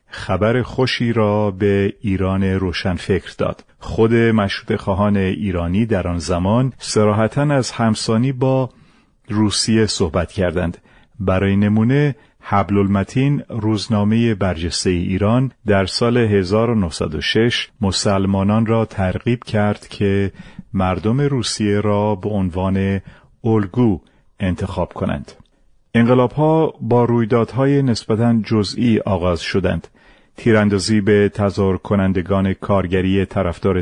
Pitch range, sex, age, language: 95-115 Hz, male, 40-59, Persian